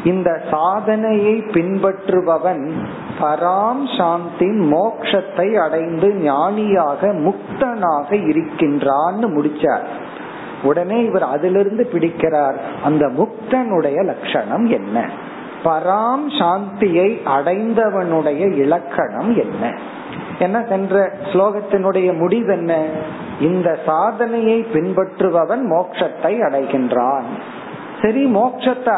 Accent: native